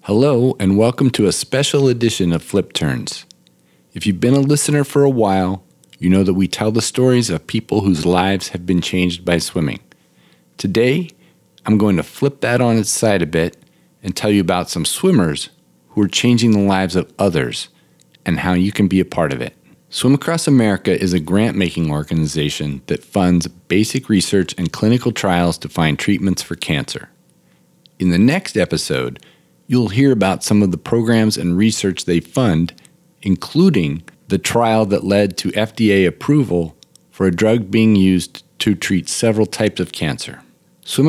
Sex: male